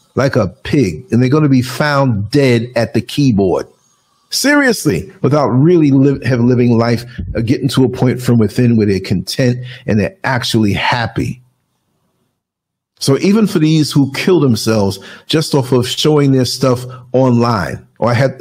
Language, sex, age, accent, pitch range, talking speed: English, male, 50-69, American, 100-140 Hz, 165 wpm